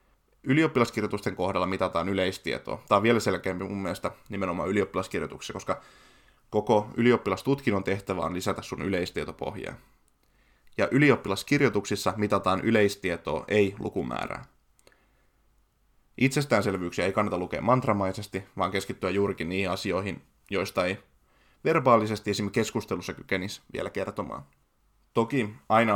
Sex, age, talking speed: male, 20-39, 105 wpm